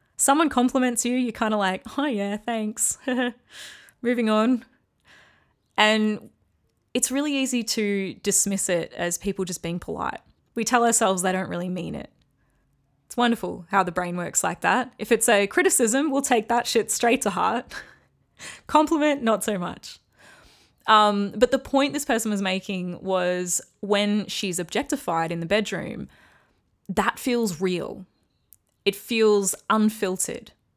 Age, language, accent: 20-39, English, Australian